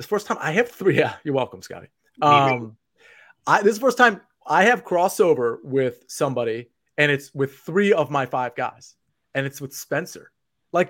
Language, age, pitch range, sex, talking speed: English, 30-49, 130-170 Hz, male, 185 wpm